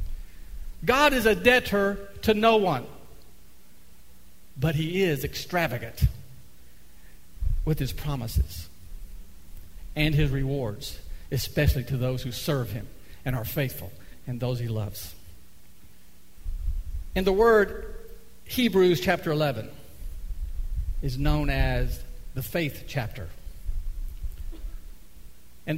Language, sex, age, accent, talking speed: English, male, 50-69, American, 100 wpm